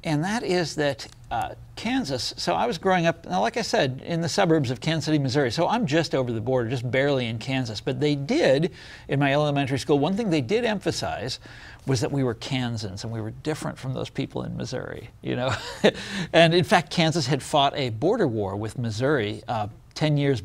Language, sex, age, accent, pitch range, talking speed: English, male, 40-59, American, 120-160 Hz, 215 wpm